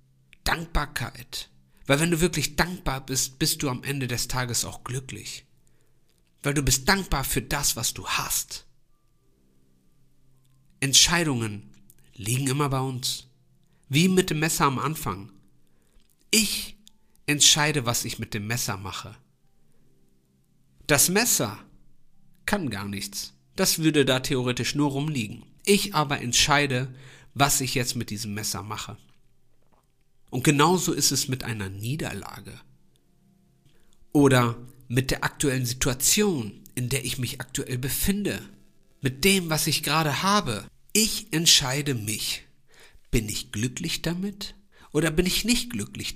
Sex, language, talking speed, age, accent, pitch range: male, German, 130 wpm, 50-69, German, 115-150 Hz